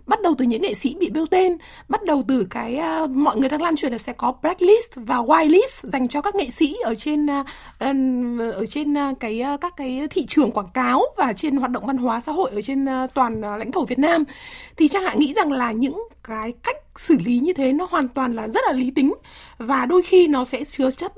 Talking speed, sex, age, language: 235 wpm, female, 20-39, Vietnamese